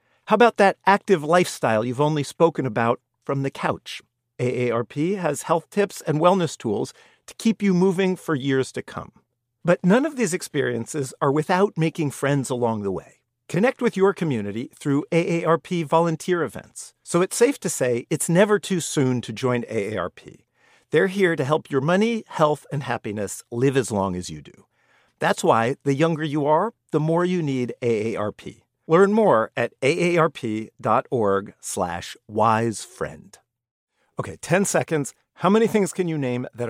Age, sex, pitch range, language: 50-69, male, 130-190 Hz, English